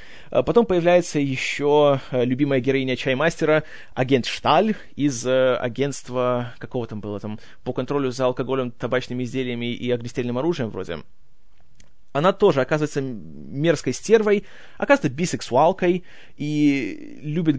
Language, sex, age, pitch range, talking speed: Russian, male, 20-39, 125-170 Hz, 115 wpm